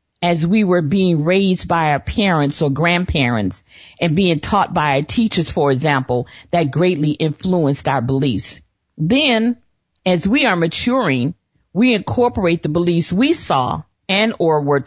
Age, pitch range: 50-69, 155-220 Hz